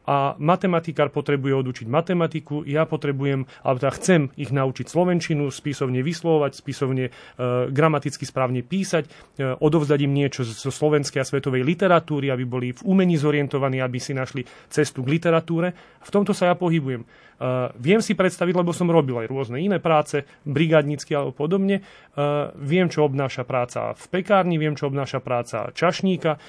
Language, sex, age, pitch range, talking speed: Slovak, male, 30-49, 135-170 Hz, 165 wpm